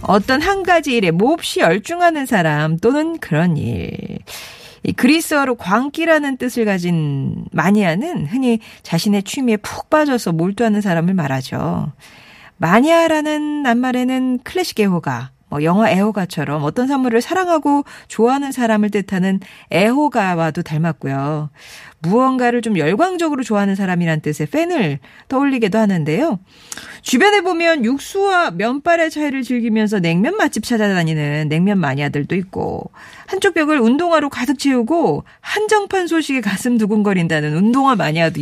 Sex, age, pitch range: female, 40-59, 175-275 Hz